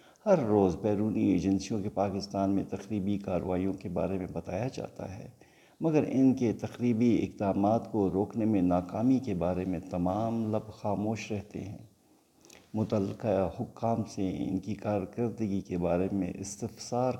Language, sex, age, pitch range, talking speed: Urdu, male, 50-69, 95-115 Hz, 145 wpm